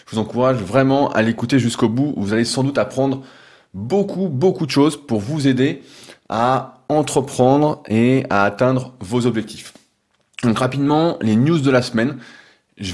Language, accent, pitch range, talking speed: French, French, 115-145 Hz, 160 wpm